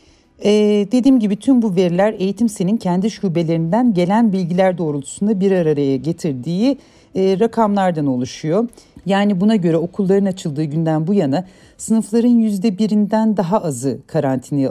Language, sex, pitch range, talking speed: Turkish, female, 160-215 Hz, 125 wpm